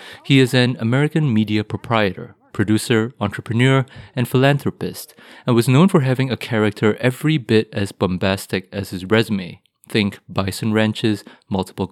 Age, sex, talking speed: 30-49, male, 140 wpm